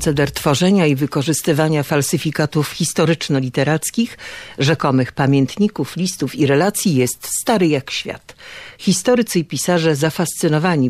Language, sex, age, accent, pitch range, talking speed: Polish, female, 50-69, native, 135-165 Hz, 105 wpm